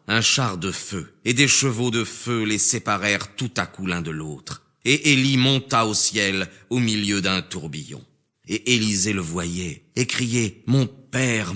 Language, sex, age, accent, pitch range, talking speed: French, male, 40-59, French, 90-120 Hz, 180 wpm